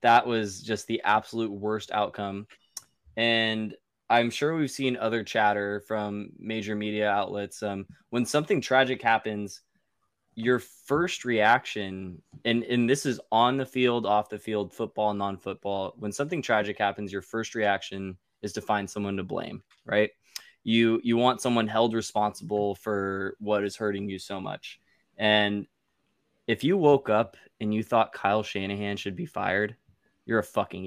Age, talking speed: 20-39, 155 wpm